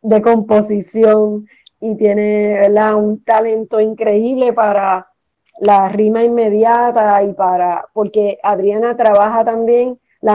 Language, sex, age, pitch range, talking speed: Spanish, female, 30-49, 210-245 Hz, 110 wpm